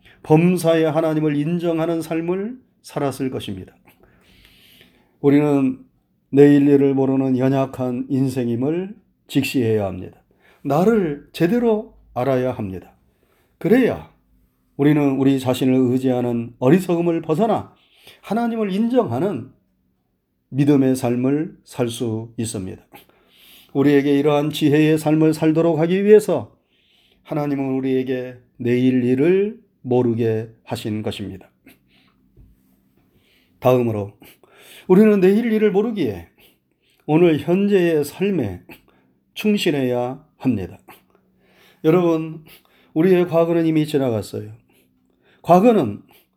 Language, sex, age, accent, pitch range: Korean, male, 30-49, native, 120-175 Hz